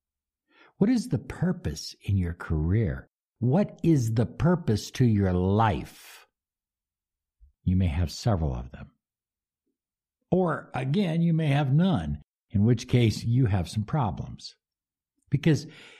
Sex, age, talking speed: male, 60-79, 130 wpm